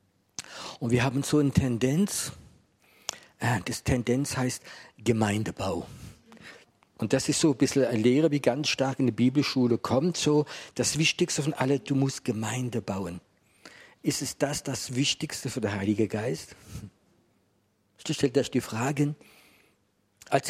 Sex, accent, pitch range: male, German, 120-150 Hz